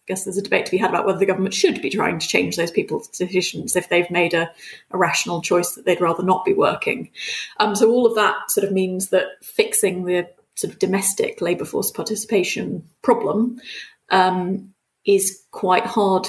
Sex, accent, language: female, British, English